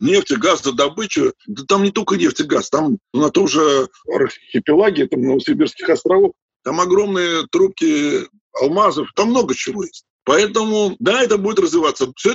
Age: 50-69